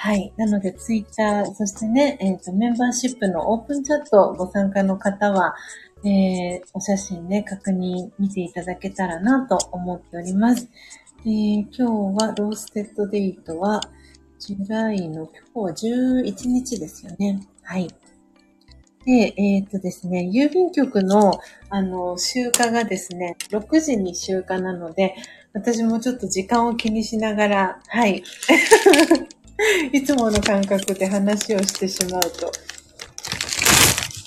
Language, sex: Japanese, female